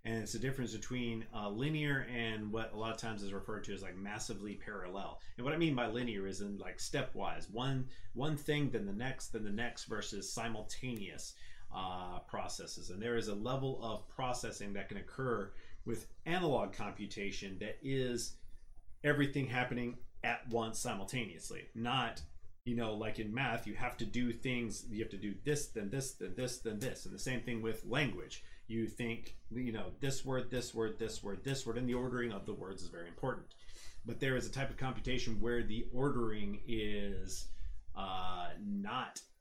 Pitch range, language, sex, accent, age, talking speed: 100-125 Hz, English, male, American, 30-49, 190 wpm